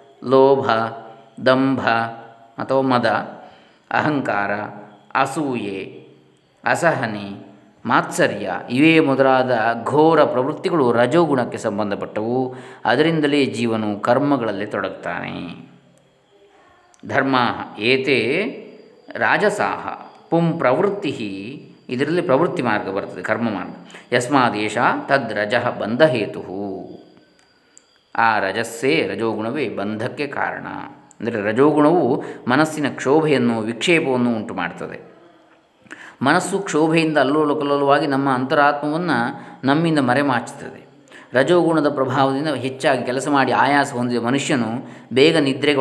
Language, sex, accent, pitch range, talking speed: Kannada, male, native, 115-145 Hz, 75 wpm